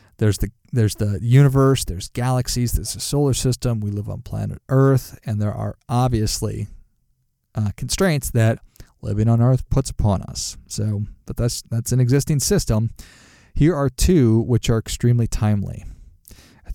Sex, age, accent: male, 40-59, American